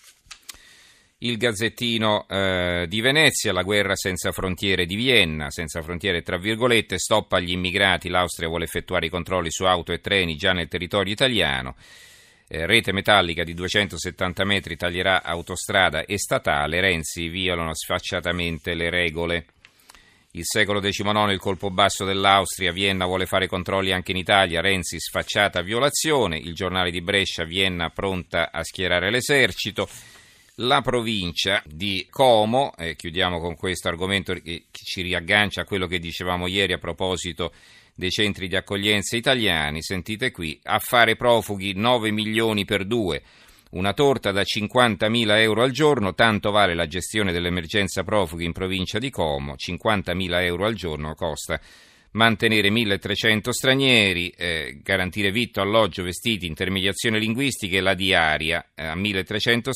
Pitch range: 90-110 Hz